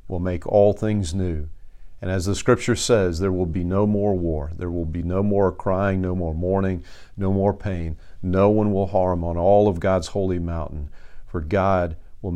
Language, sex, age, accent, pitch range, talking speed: English, male, 50-69, American, 85-100 Hz, 200 wpm